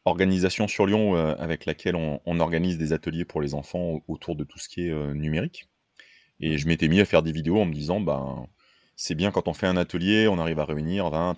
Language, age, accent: French, 30-49, French